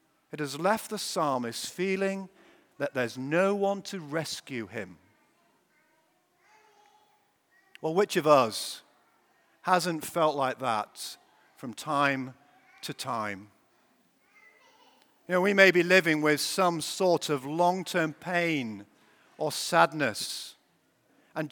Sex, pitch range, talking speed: male, 165-230 Hz, 110 wpm